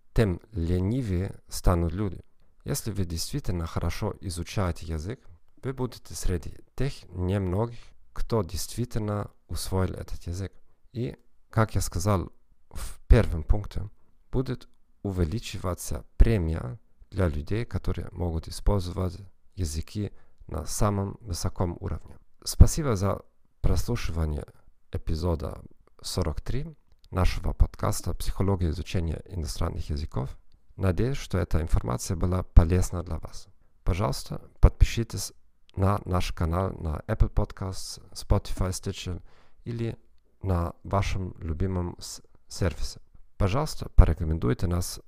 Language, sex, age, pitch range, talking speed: Russian, male, 40-59, 85-105 Hz, 105 wpm